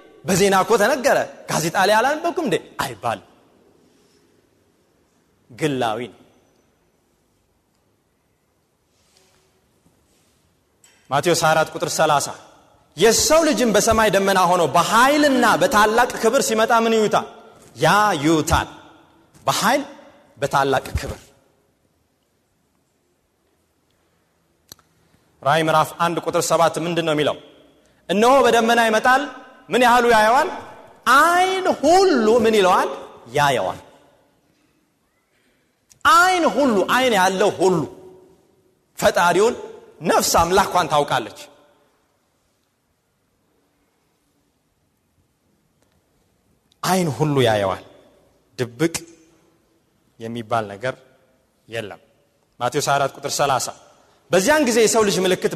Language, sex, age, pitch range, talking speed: Amharic, male, 30-49, 140-235 Hz, 80 wpm